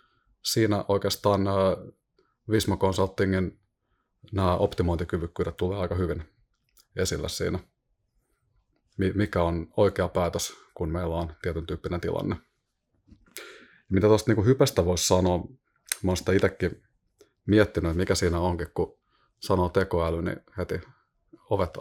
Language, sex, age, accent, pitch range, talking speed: Finnish, male, 30-49, native, 90-100 Hz, 120 wpm